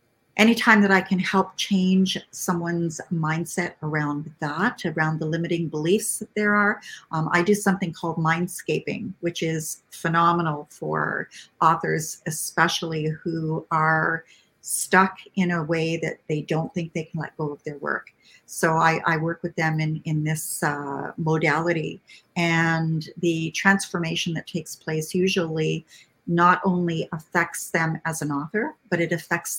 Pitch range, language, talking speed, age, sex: 155-185 Hz, English, 150 wpm, 50-69, female